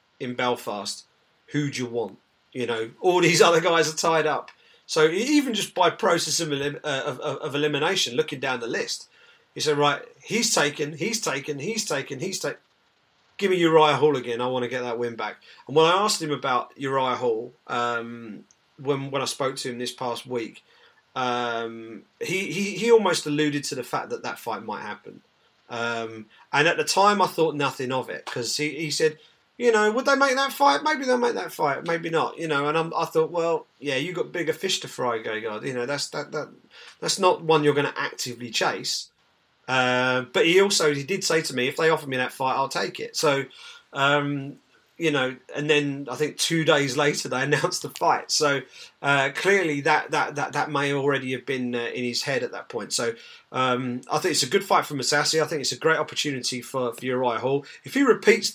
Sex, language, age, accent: male, English, 40-59, British